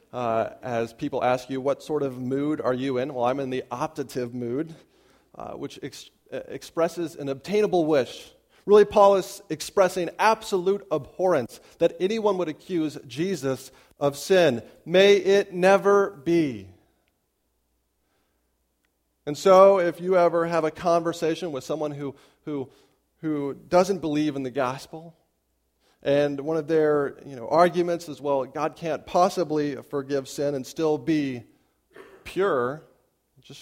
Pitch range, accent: 130-175 Hz, American